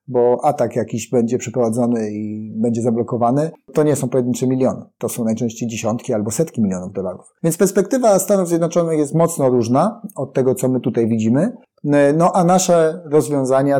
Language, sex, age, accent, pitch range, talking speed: Polish, male, 30-49, native, 120-155 Hz, 165 wpm